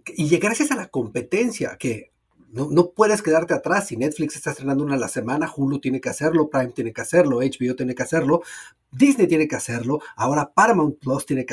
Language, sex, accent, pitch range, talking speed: Spanish, male, Mexican, 130-180 Hz, 210 wpm